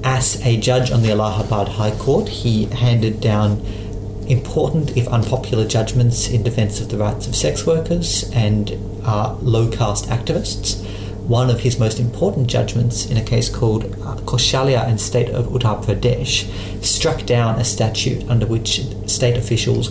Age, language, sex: 40-59, English, male